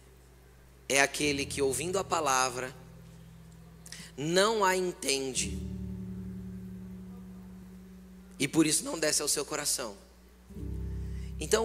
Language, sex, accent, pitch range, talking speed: Portuguese, male, Brazilian, 130-185 Hz, 95 wpm